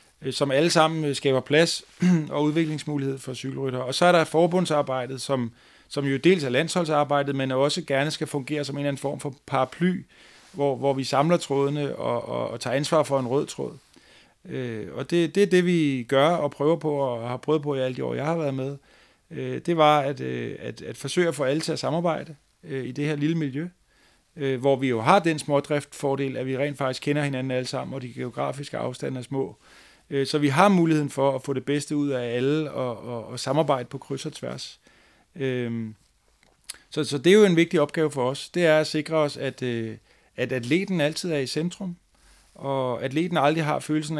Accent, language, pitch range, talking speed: native, Danish, 130-155 Hz, 205 wpm